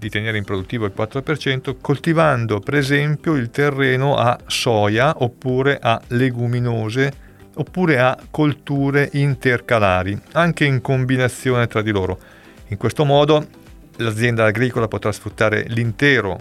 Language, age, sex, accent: Italian, 40-59, male, native